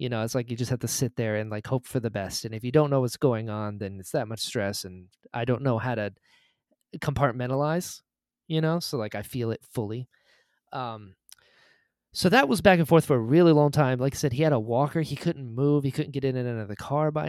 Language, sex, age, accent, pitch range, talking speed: English, male, 20-39, American, 110-145 Hz, 265 wpm